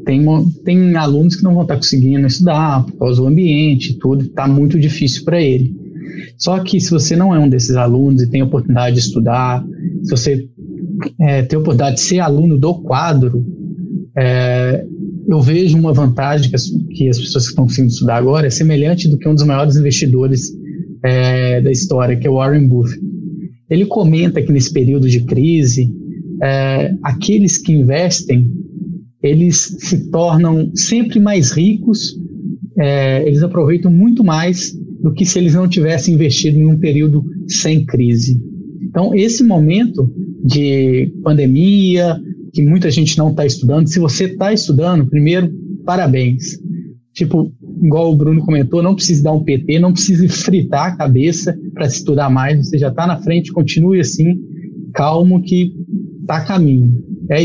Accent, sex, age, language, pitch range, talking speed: Brazilian, male, 20-39, Portuguese, 135-175 Hz, 160 wpm